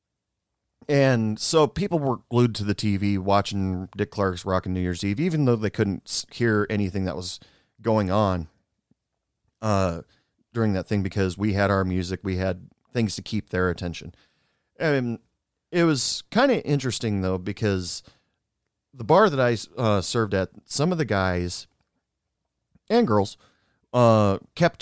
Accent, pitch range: American, 95-115 Hz